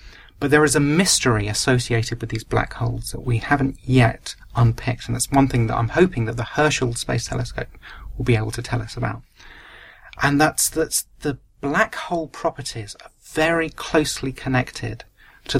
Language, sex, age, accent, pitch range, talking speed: English, male, 40-59, British, 115-145 Hz, 175 wpm